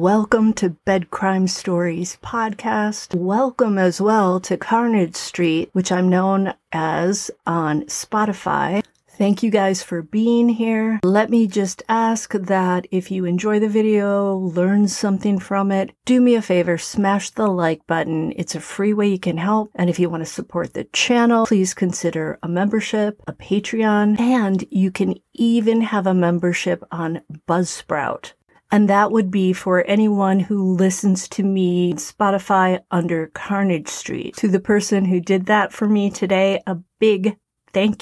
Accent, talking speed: American, 165 wpm